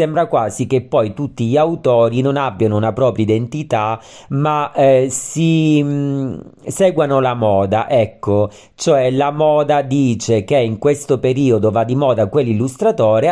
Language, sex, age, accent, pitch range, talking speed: Italian, male, 40-59, native, 110-150 Hz, 140 wpm